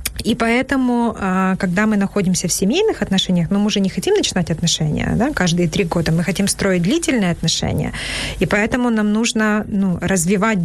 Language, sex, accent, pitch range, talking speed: Ukrainian, female, native, 165-205 Hz, 170 wpm